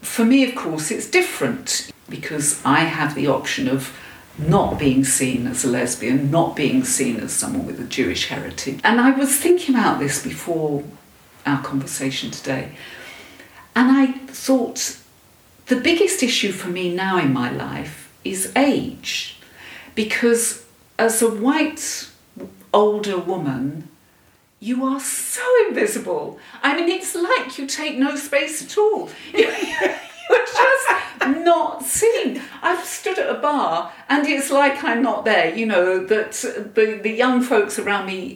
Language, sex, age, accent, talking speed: English, female, 50-69, British, 150 wpm